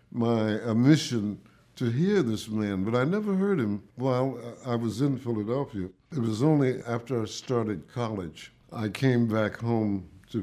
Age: 60-79